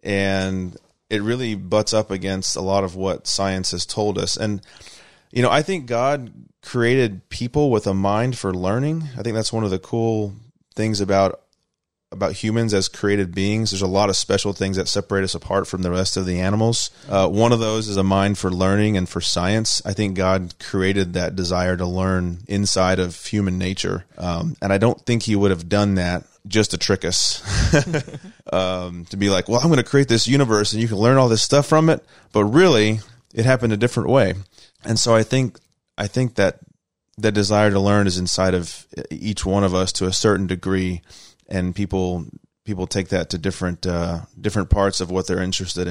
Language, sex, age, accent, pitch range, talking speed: English, male, 30-49, American, 95-110 Hz, 205 wpm